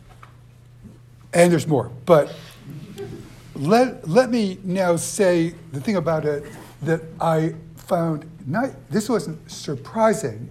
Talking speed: 115 wpm